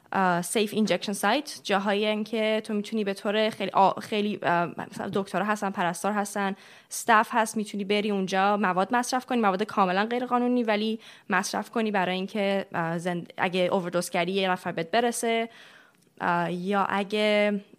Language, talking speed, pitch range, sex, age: Persian, 145 wpm, 180-225 Hz, female, 20-39